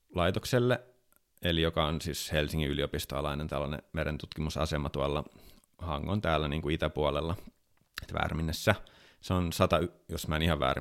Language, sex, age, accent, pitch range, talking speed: Finnish, male, 30-49, native, 70-80 Hz, 130 wpm